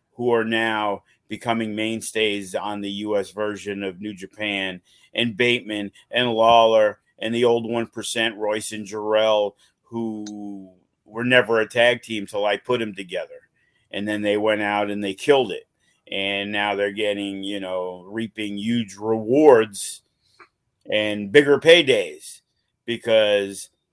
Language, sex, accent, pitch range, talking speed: English, male, American, 105-125 Hz, 140 wpm